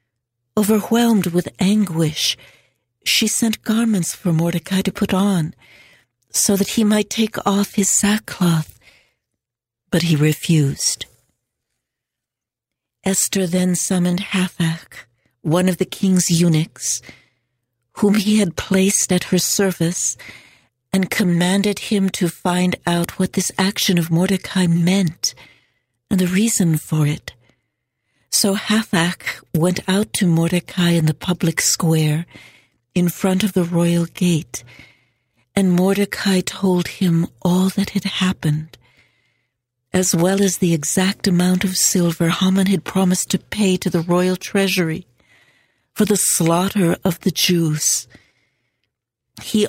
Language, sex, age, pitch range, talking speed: English, female, 60-79, 155-195 Hz, 125 wpm